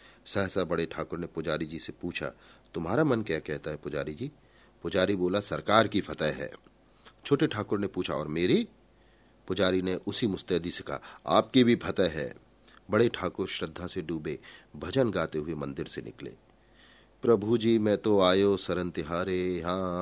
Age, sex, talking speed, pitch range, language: 40-59, male, 170 wpm, 90-115 Hz, Hindi